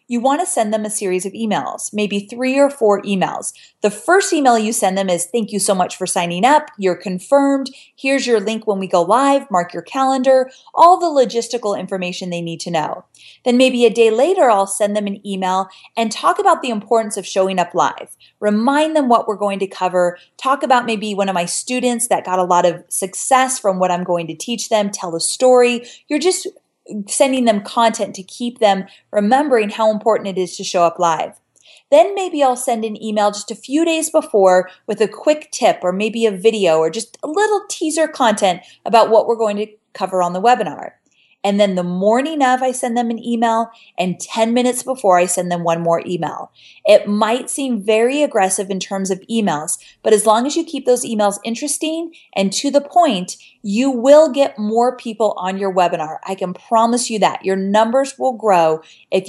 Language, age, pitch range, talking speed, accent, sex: English, 30-49, 190-250 Hz, 210 wpm, American, female